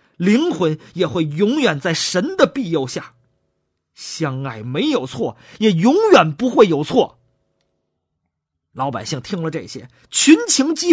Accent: native